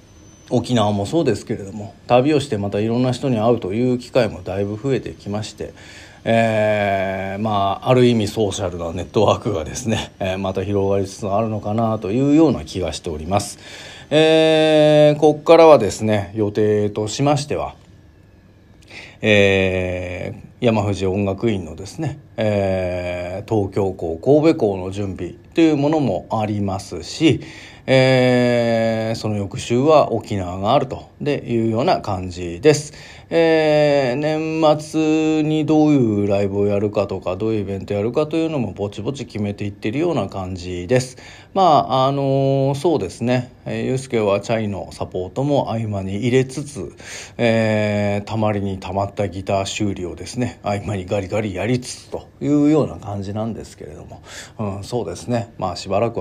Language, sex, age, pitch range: Japanese, male, 40-59, 100-125 Hz